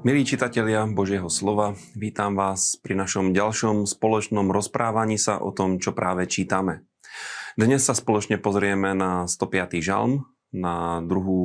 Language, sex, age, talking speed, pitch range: Slovak, male, 30-49, 135 wpm, 95-105 Hz